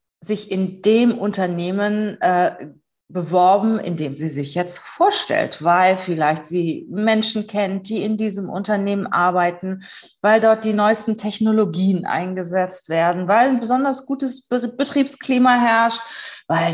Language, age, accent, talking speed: German, 30-49, German, 130 wpm